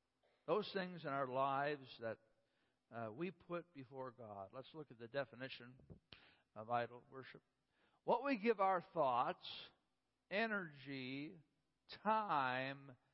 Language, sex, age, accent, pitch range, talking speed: English, male, 60-79, American, 130-190 Hz, 120 wpm